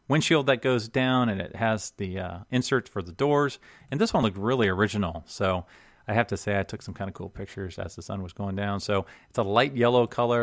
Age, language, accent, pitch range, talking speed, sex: 40-59, English, American, 100-125 Hz, 245 wpm, male